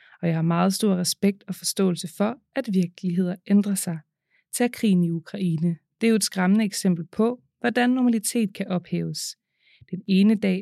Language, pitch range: Danish, 175-215 Hz